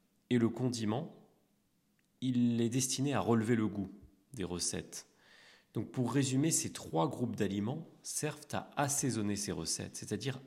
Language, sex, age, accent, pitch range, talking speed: French, male, 30-49, French, 95-125 Hz, 145 wpm